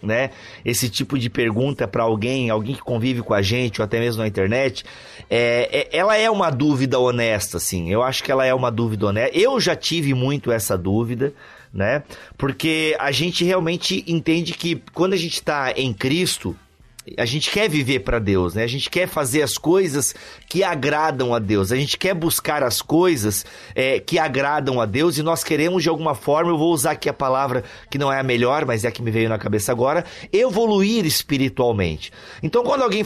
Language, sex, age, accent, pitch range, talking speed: Portuguese, male, 30-49, Brazilian, 120-180 Hz, 205 wpm